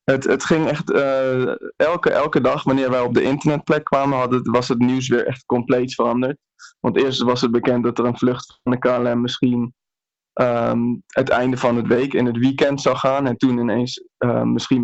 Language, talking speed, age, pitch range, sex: Dutch, 200 wpm, 20-39, 120-130 Hz, male